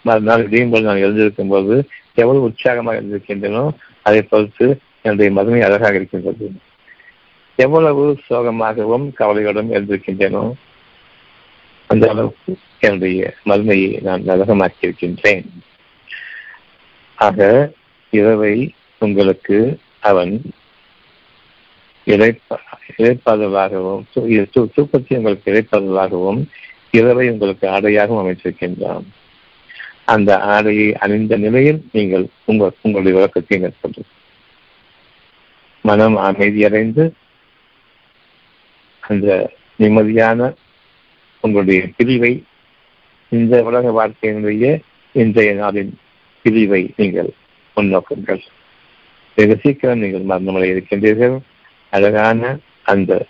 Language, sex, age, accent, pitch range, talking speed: Tamil, male, 60-79, native, 100-120 Hz, 70 wpm